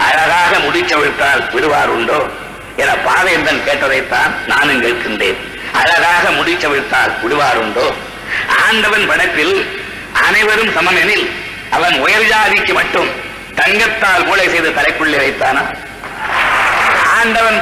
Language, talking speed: Tamil, 95 wpm